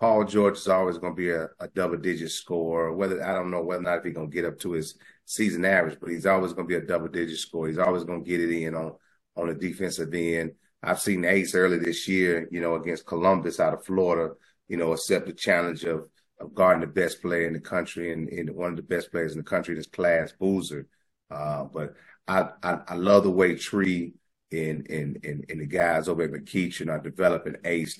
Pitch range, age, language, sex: 85-95 Hz, 30-49, English, male